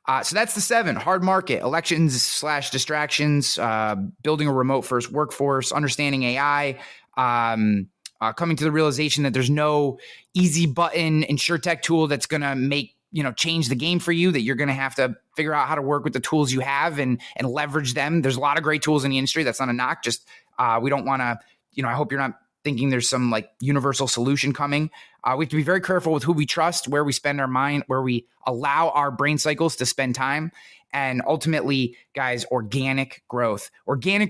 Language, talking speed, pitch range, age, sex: English, 220 wpm, 130-155 Hz, 30-49, male